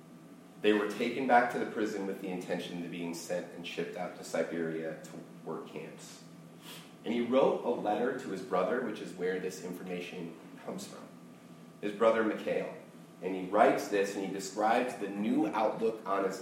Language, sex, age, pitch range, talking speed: English, male, 30-49, 85-120 Hz, 185 wpm